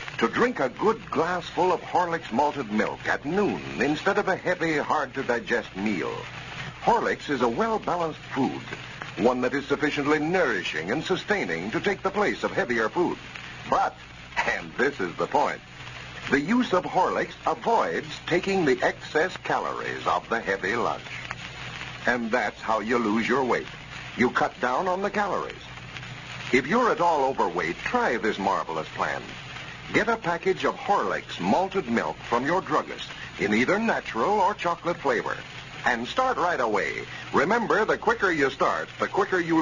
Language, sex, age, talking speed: English, male, 60-79, 160 wpm